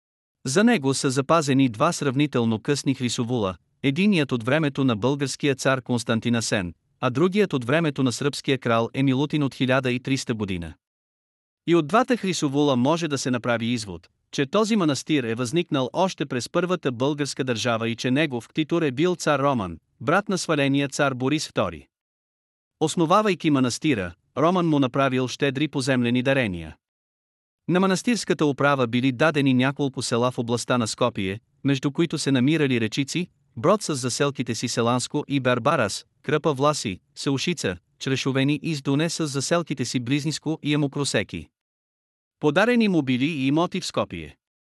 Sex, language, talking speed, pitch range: male, Bulgarian, 145 wpm, 125-155 Hz